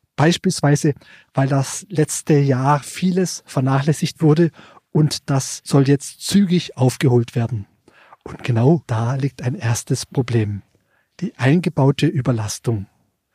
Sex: male